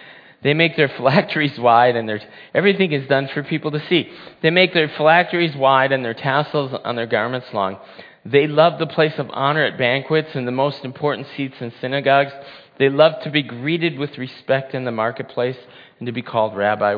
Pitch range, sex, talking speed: 115-150 Hz, male, 200 wpm